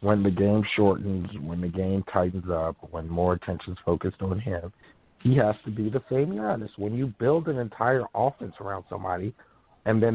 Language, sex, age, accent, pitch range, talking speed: English, male, 50-69, American, 95-110 Hz, 190 wpm